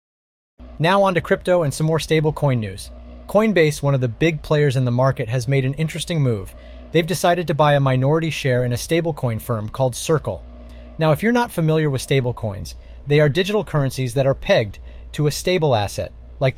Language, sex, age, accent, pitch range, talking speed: English, male, 30-49, American, 115-165 Hz, 200 wpm